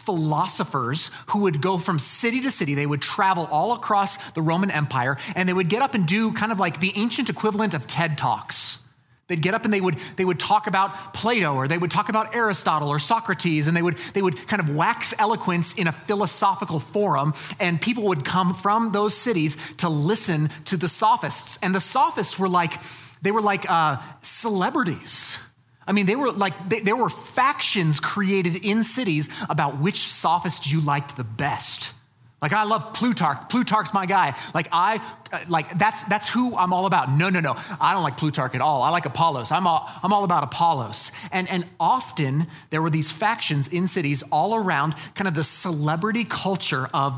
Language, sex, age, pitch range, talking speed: English, male, 30-49, 145-200 Hz, 195 wpm